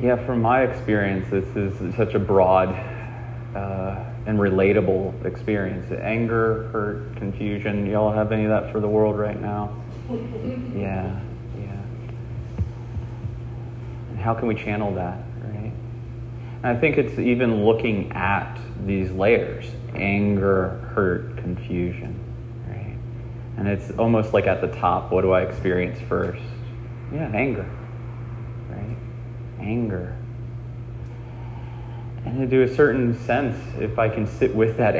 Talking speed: 130 wpm